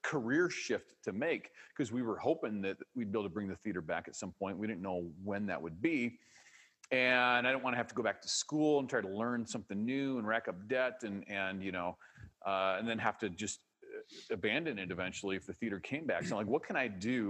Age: 40-59